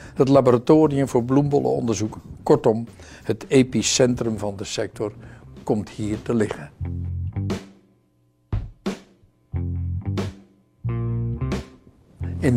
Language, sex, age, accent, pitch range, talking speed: Dutch, male, 60-79, Dutch, 100-135 Hz, 70 wpm